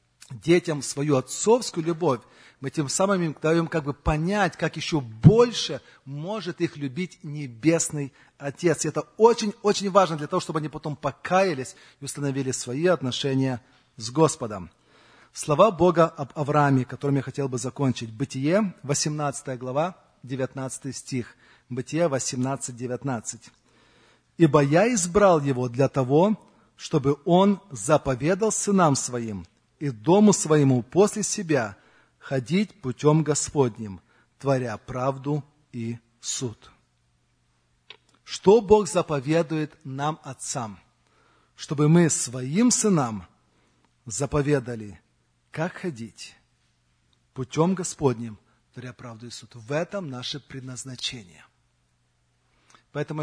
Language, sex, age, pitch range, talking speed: Russian, male, 40-59, 125-165 Hz, 110 wpm